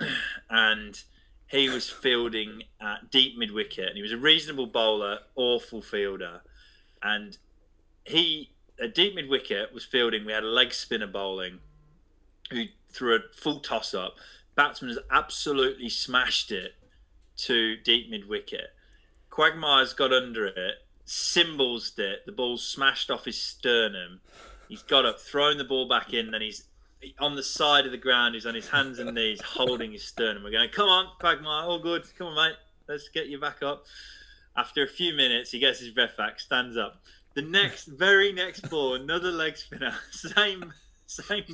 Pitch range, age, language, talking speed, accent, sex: 115-170 Hz, 20-39, English, 170 wpm, British, male